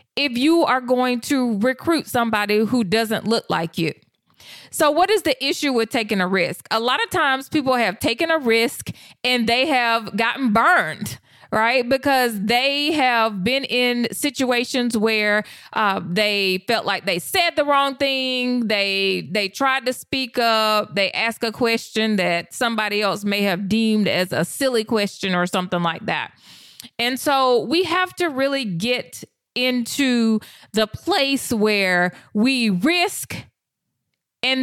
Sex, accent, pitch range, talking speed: female, American, 210-270 Hz, 155 wpm